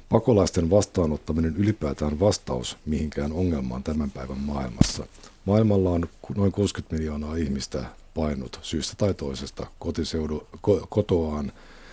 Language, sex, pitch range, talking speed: Finnish, male, 75-95 Hz, 105 wpm